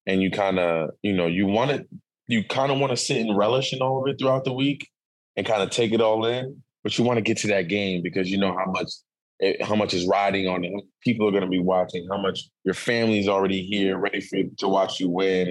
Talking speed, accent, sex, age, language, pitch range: 275 wpm, American, male, 20-39, English, 95-115 Hz